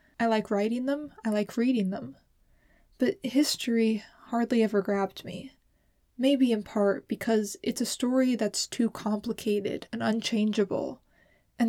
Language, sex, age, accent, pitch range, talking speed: English, female, 20-39, American, 200-225 Hz, 140 wpm